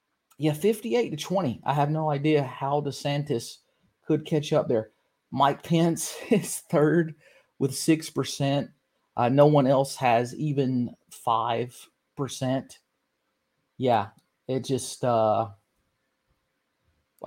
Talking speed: 110 wpm